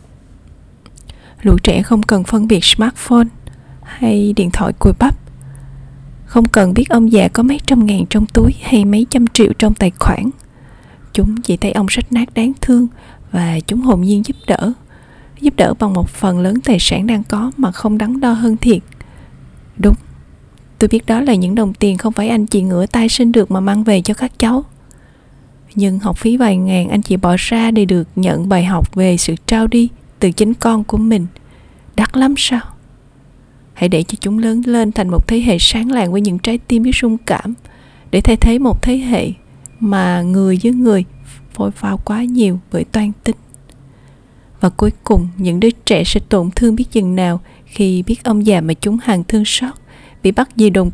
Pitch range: 185-230 Hz